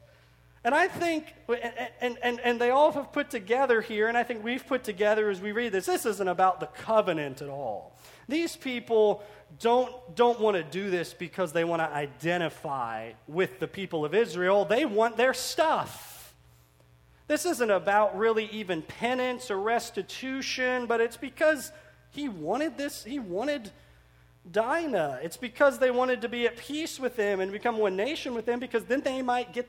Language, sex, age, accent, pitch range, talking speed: English, male, 40-59, American, 185-255 Hz, 180 wpm